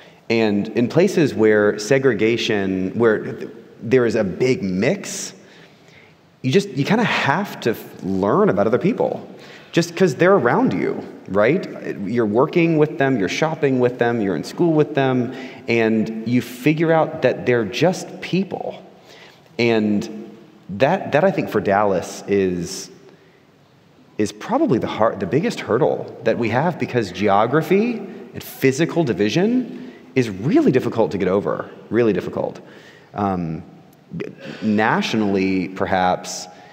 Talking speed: 135 wpm